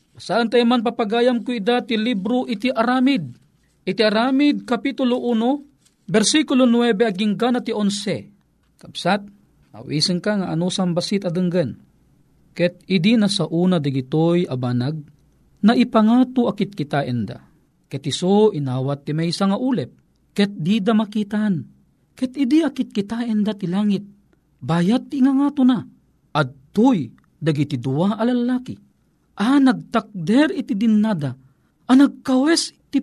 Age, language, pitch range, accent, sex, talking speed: 40-59, Filipino, 165-235 Hz, native, male, 125 wpm